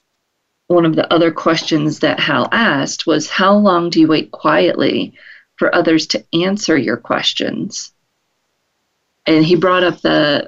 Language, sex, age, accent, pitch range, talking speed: English, female, 40-59, American, 155-190 Hz, 150 wpm